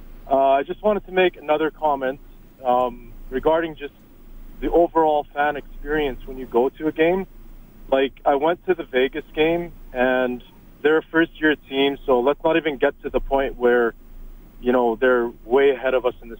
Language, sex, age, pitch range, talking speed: English, male, 40-59, 130-165 Hz, 185 wpm